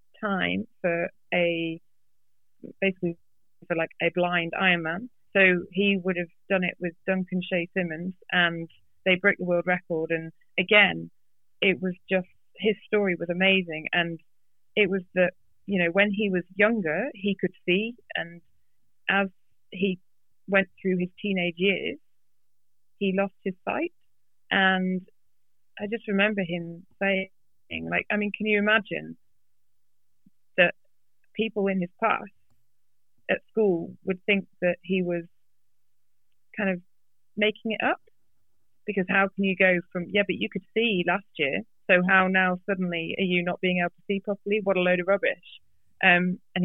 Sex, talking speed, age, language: female, 155 wpm, 30-49, Danish